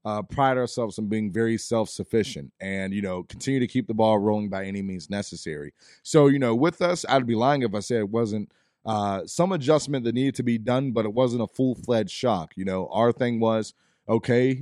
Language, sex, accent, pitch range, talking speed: English, male, American, 105-125 Hz, 220 wpm